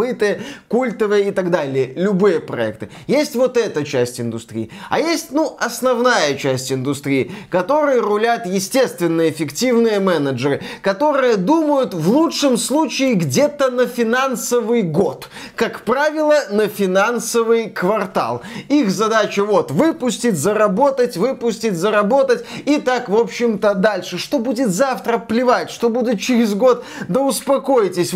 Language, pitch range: Russian, 190-245 Hz